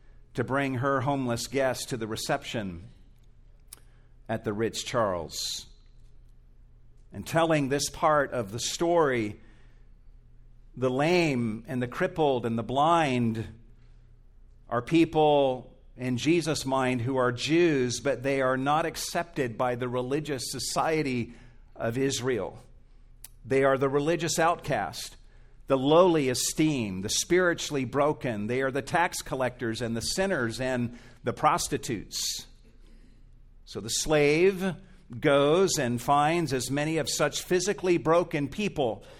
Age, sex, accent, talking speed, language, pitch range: 50-69, male, American, 125 wpm, English, 120-160 Hz